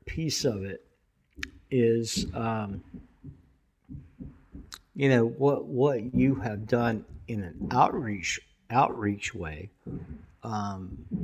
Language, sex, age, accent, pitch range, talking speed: English, male, 50-69, American, 95-125 Hz, 95 wpm